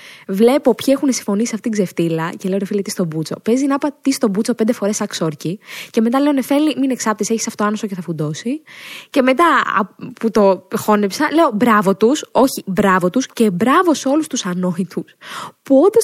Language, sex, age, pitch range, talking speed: Greek, female, 20-39, 195-275 Hz, 200 wpm